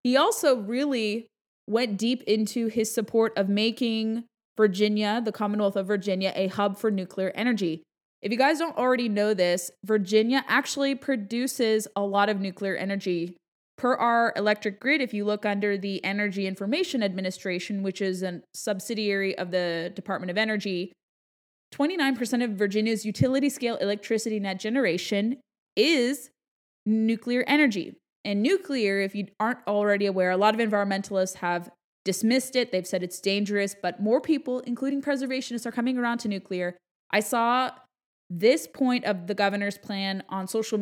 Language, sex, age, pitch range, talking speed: English, female, 20-39, 195-235 Hz, 155 wpm